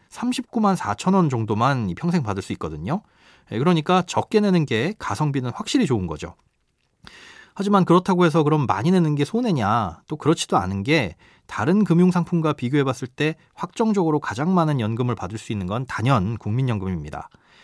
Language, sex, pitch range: Korean, male, 115-175 Hz